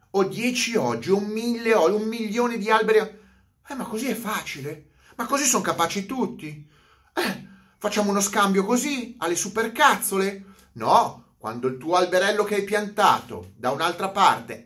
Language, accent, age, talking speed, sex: Italian, native, 30-49, 160 wpm, male